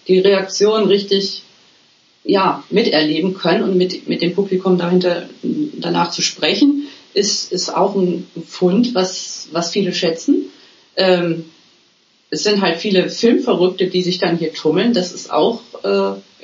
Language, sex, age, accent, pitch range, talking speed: German, female, 40-59, German, 180-220 Hz, 145 wpm